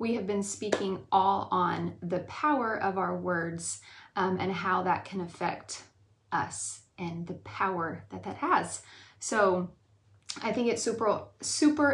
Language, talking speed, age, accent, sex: English, 150 wpm, 20-39, American, female